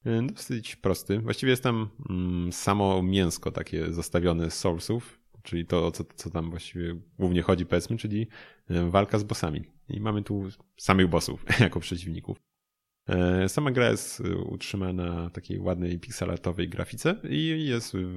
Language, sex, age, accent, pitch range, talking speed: Polish, male, 30-49, native, 90-110 Hz, 140 wpm